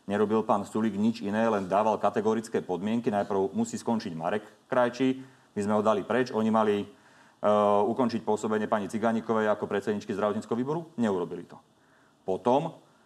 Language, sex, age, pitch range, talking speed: Slovak, male, 40-59, 110-135 Hz, 150 wpm